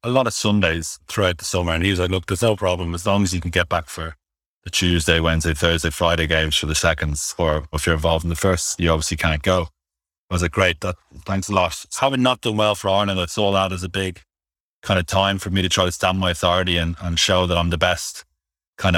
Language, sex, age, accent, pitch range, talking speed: English, male, 30-49, Irish, 85-95 Hz, 260 wpm